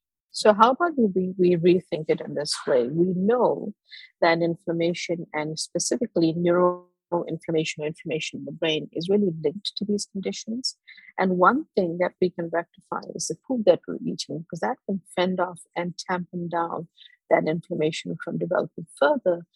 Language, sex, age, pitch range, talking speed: English, female, 50-69, 170-205 Hz, 165 wpm